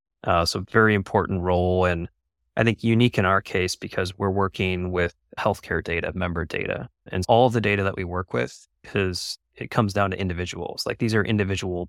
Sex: male